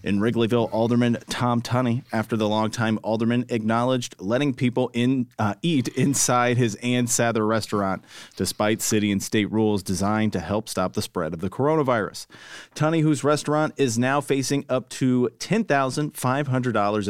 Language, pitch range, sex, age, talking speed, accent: English, 105-125 Hz, male, 30-49, 150 wpm, American